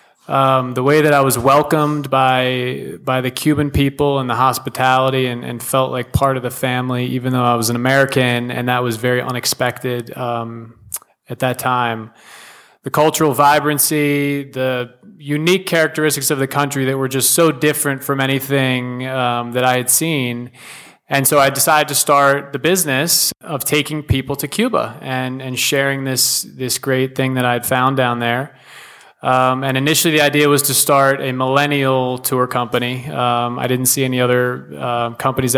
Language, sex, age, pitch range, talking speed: English, male, 20-39, 125-145 Hz, 175 wpm